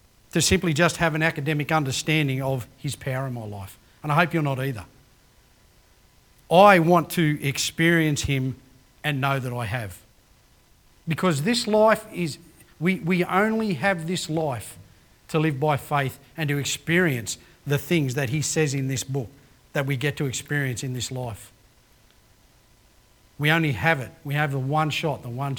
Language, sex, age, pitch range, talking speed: English, male, 40-59, 125-165 Hz, 170 wpm